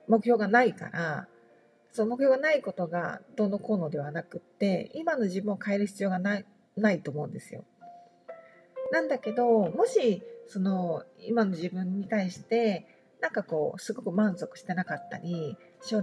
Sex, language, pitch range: female, Japanese, 180-245 Hz